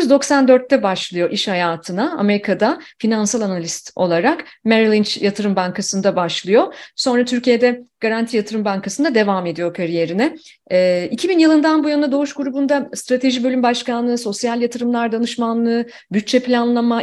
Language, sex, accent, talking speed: Turkish, female, native, 125 wpm